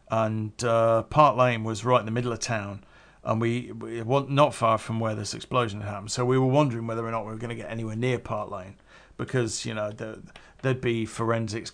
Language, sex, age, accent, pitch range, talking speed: English, male, 50-69, British, 110-130 Hz, 225 wpm